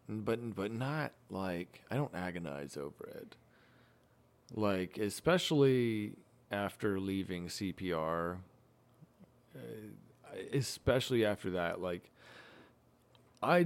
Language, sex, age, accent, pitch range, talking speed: English, male, 30-49, American, 90-115 Hz, 85 wpm